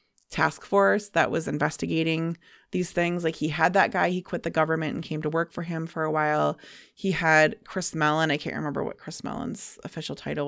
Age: 20-39